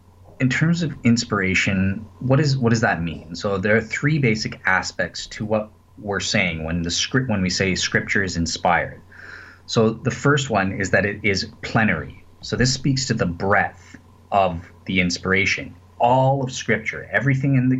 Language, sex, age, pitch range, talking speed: English, male, 30-49, 90-120 Hz, 180 wpm